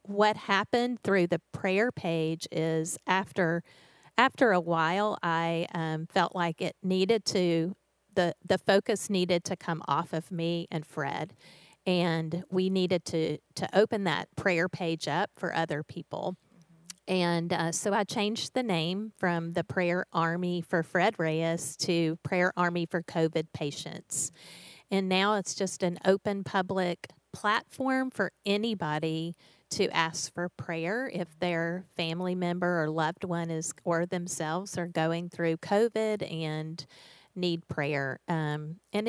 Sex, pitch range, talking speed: female, 165-195 Hz, 145 wpm